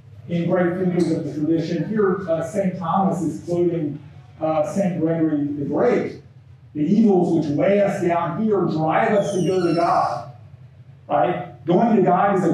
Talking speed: 170 wpm